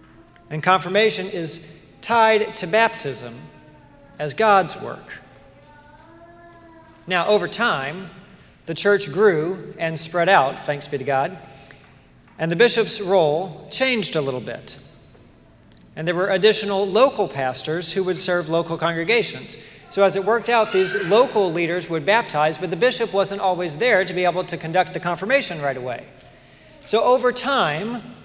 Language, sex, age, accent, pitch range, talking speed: English, male, 40-59, American, 160-210 Hz, 145 wpm